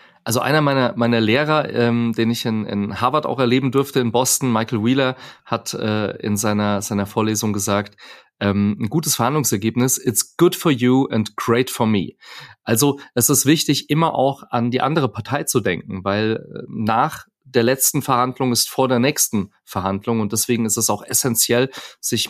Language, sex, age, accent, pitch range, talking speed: German, male, 30-49, German, 115-140 Hz, 180 wpm